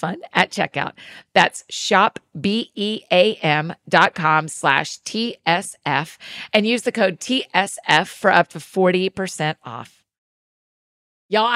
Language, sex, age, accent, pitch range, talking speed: English, female, 40-59, American, 195-245 Hz, 95 wpm